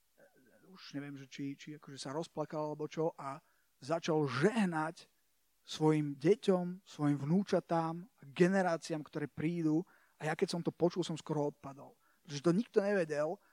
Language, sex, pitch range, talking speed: Slovak, male, 150-180 Hz, 150 wpm